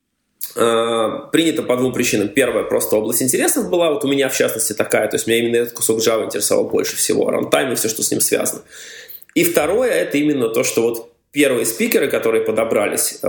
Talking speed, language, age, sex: 195 wpm, Russian, 20-39, male